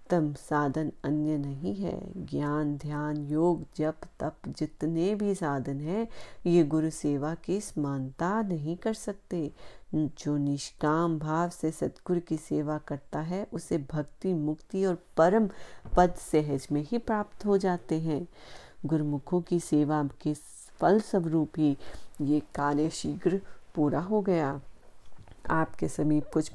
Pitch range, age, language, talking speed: 150-180 Hz, 30-49, Hindi, 135 wpm